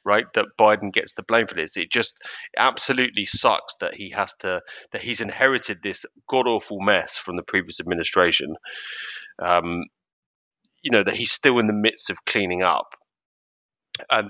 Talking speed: 170 wpm